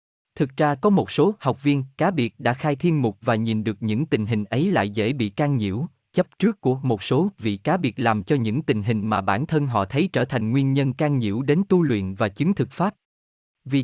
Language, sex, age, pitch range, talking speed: Vietnamese, male, 20-39, 110-165 Hz, 245 wpm